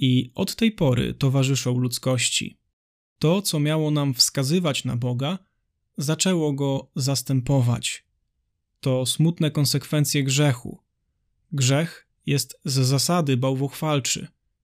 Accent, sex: native, male